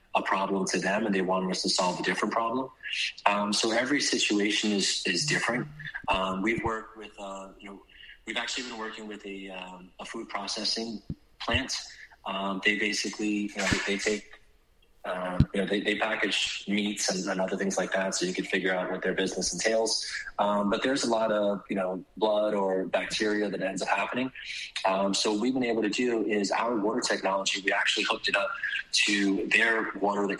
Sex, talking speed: male, 205 wpm